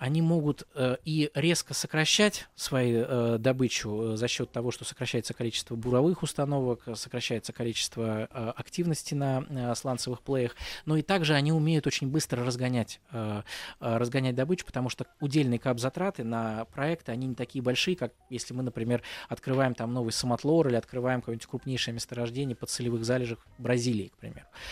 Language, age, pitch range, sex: Russian, 20-39, 120-145 Hz, male